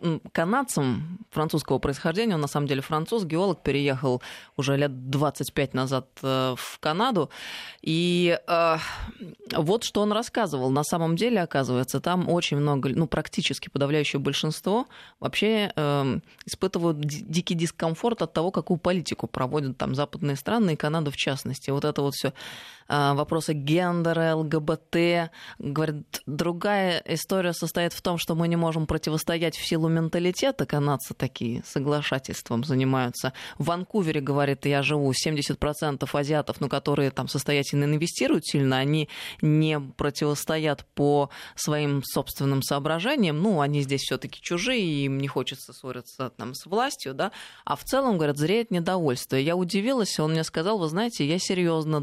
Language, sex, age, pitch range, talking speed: Russian, female, 20-39, 140-175 Hz, 145 wpm